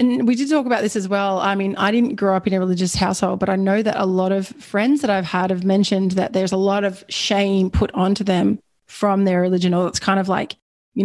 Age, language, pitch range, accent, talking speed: 20-39, English, 190-235 Hz, Australian, 265 wpm